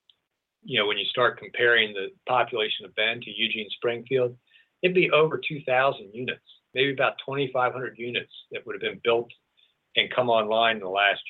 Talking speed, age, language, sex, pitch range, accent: 175 wpm, 50-69, English, male, 115-180 Hz, American